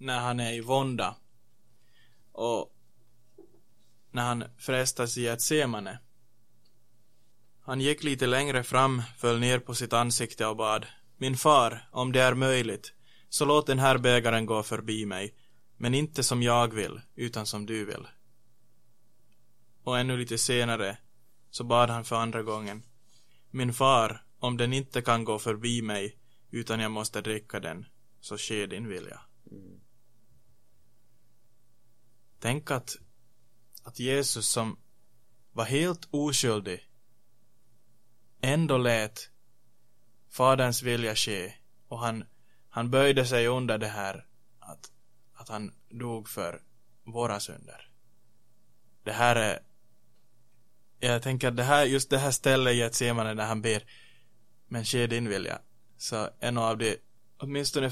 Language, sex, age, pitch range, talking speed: Swedish, male, 20-39, 115-125 Hz, 135 wpm